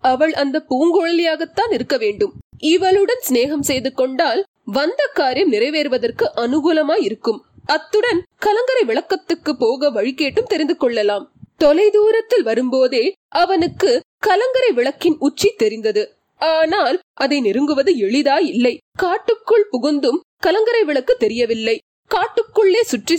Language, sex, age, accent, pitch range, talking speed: Tamil, female, 20-39, native, 260-410 Hz, 100 wpm